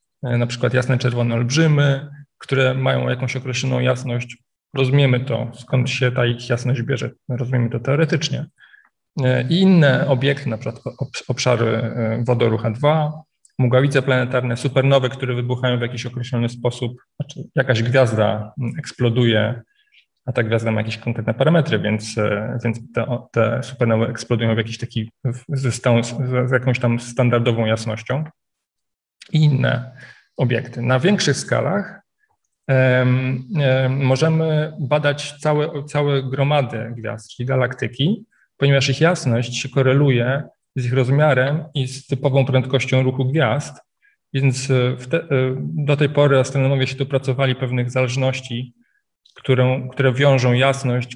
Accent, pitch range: native, 120-140 Hz